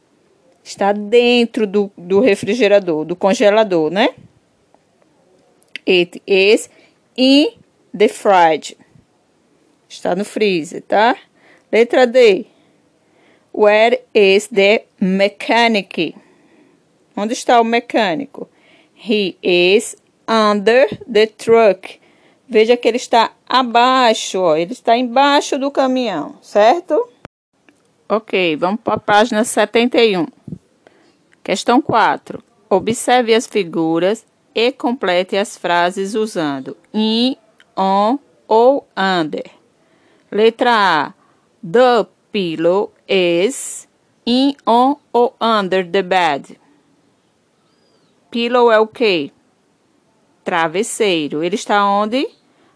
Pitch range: 195-245 Hz